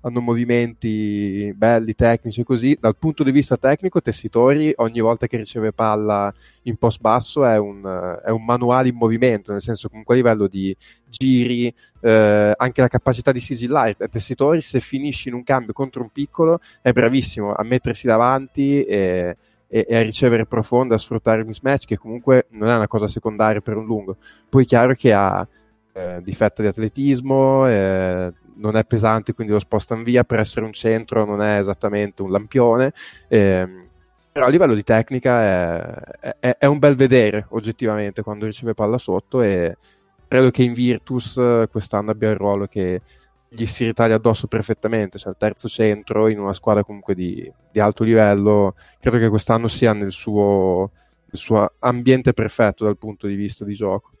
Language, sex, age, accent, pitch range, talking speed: Italian, male, 20-39, native, 105-125 Hz, 180 wpm